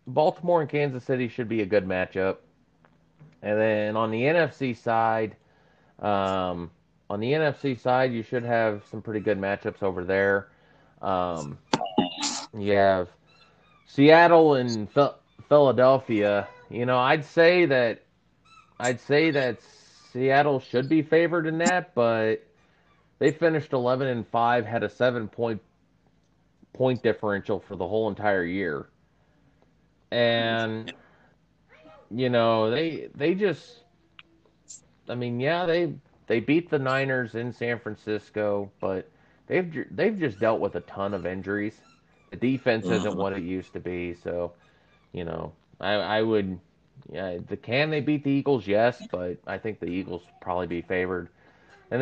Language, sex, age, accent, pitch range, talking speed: English, male, 30-49, American, 100-135 Hz, 145 wpm